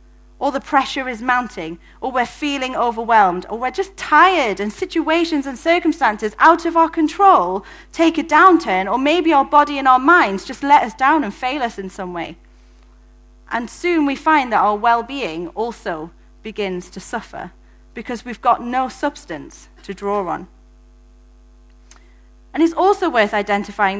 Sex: female